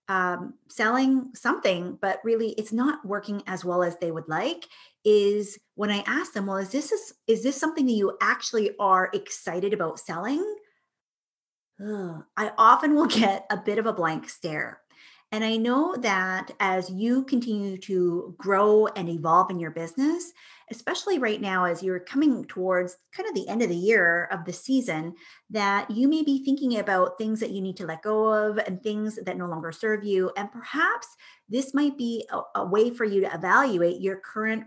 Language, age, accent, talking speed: English, 30-49, American, 185 wpm